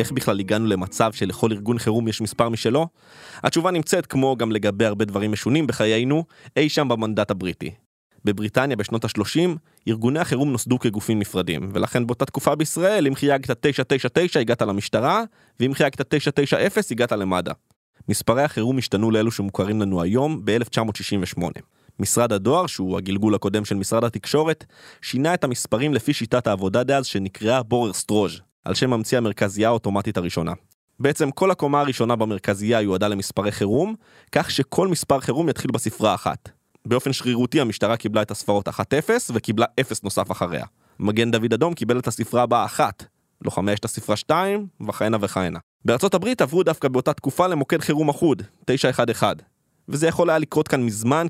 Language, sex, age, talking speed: Hebrew, male, 20-39, 155 wpm